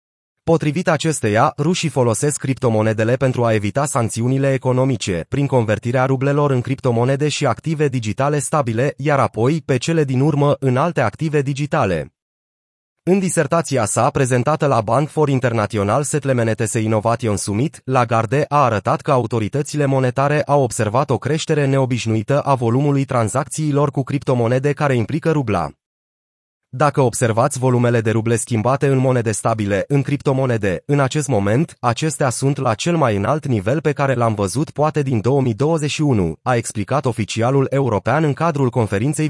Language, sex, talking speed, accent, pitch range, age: Romanian, male, 145 wpm, native, 115-145 Hz, 30-49